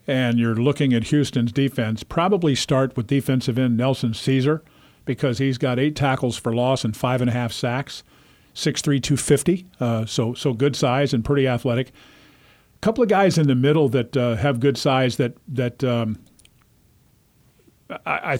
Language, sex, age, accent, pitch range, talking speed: English, male, 50-69, American, 125-145 Hz, 160 wpm